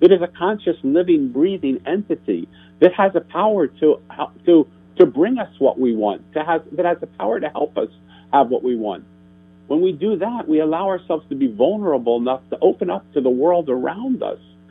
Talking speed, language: 210 wpm, English